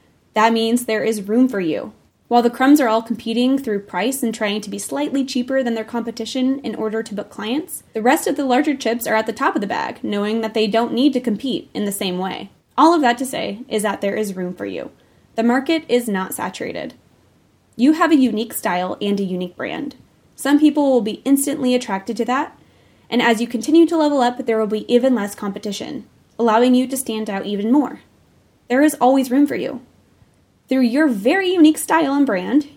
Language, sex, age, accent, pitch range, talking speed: English, female, 10-29, American, 215-265 Hz, 220 wpm